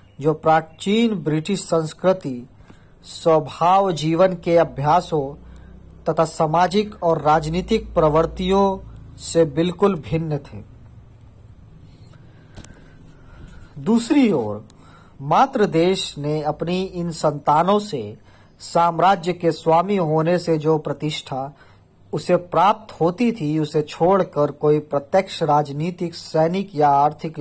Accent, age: native, 40-59